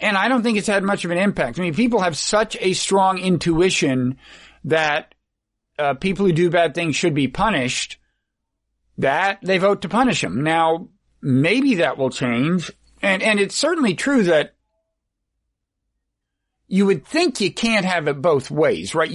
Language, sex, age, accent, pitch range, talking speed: English, male, 50-69, American, 145-195 Hz, 170 wpm